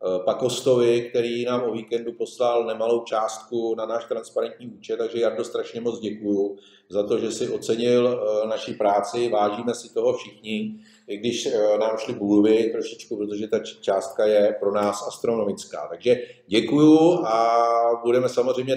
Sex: male